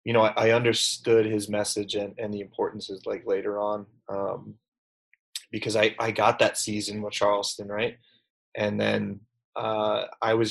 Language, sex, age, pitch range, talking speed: English, male, 20-39, 105-115 Hz, 170 wpm